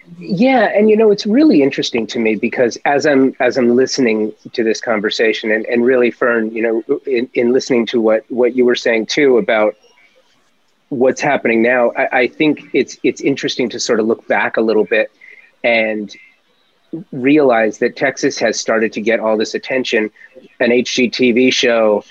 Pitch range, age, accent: 120-150 Hz, 30-49, American